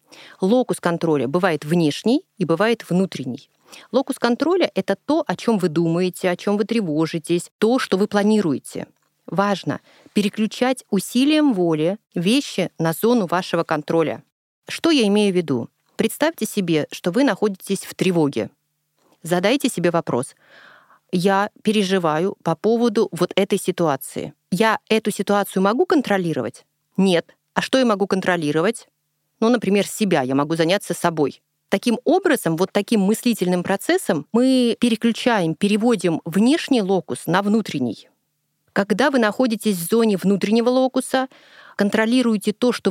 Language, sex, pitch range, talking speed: Russian, female, 175-230 Hz, 135 wpm